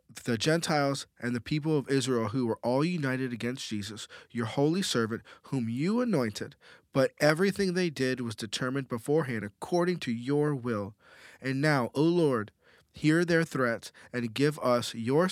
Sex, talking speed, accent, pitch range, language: male, 160 wpm, American, 115-150 Hz, English